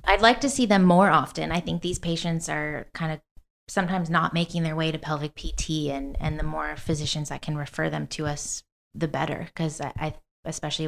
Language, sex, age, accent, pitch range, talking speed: English, female, 20-39, American, 155-180 Hz, 210 wpm